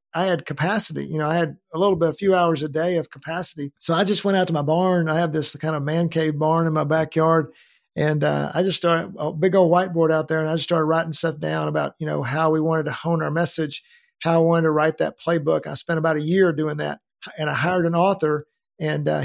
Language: English